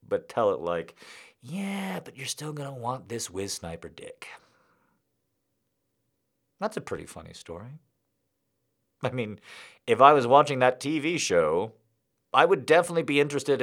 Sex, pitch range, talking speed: male, 105-165 Hz, 150 wpm